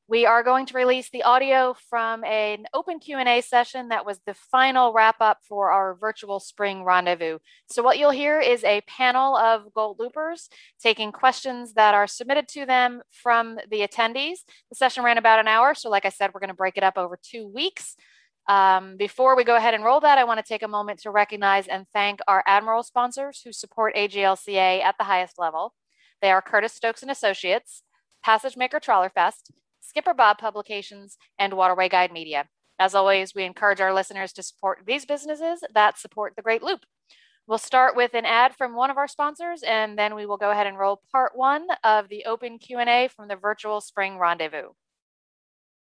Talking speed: 195 wpm